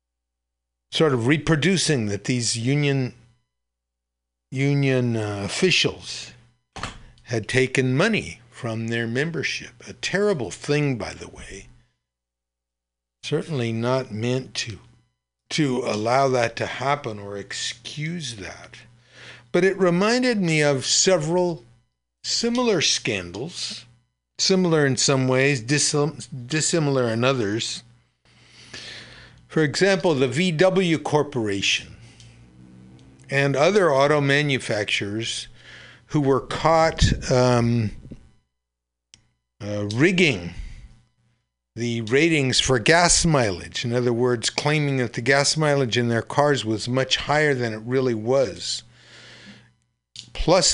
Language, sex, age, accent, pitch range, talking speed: English, male, 60-79, American, 105-145 Hz, 105 wpm